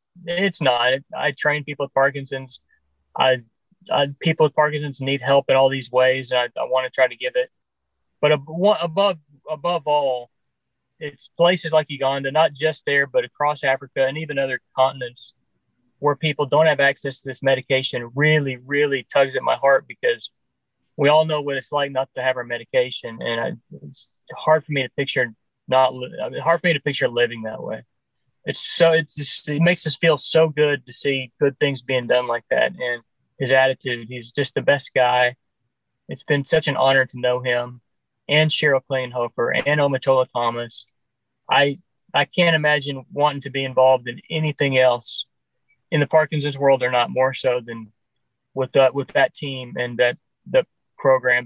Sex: male